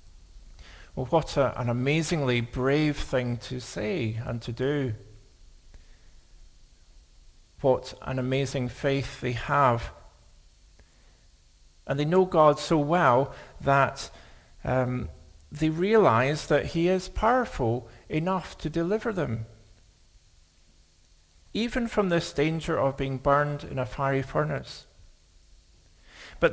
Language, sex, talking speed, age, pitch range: English, male, 105 wpm, 50-69, 95-150 Hz